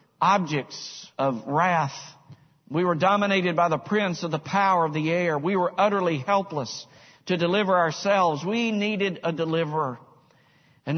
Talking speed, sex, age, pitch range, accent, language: 150 wpm, male, 60-79, 150-190 Hz, American, English